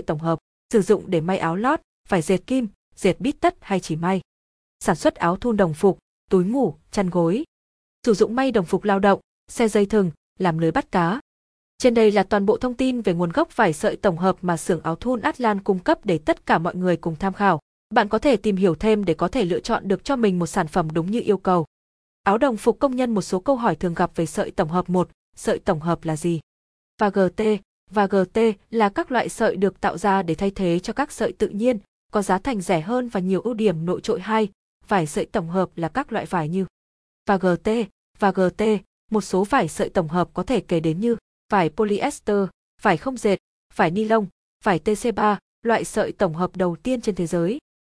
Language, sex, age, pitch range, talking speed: Vietnamese, female, 20-39, 180-220 Hz, 235 wpm